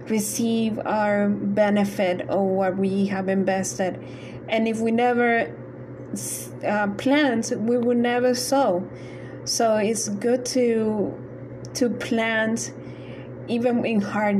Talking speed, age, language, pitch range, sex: 115 wpm, 20-39, English, 200-235 Hz, female